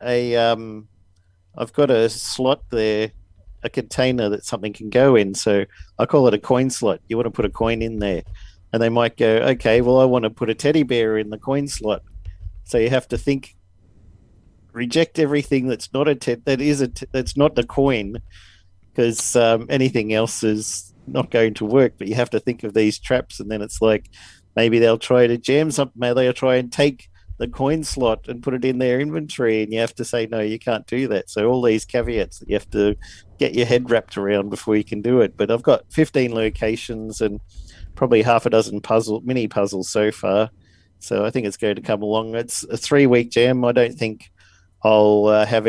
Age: 50-69